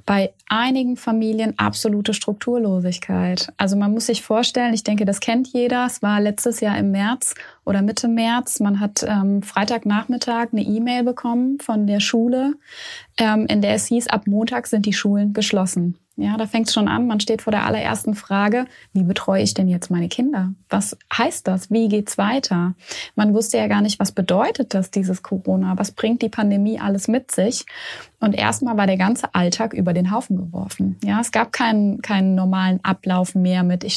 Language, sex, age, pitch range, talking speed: German, female, 20-39, 195-225 Hz, 185 wpm